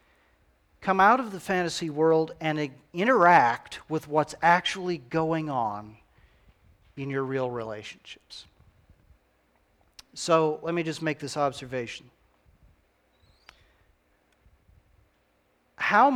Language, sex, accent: English, male, American